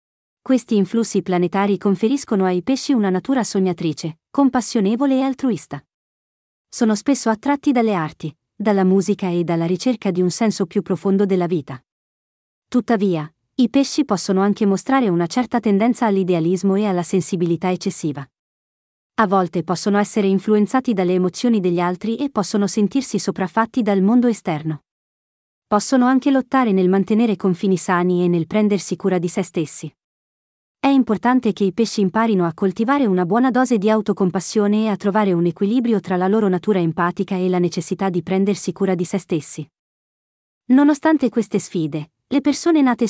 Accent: Italian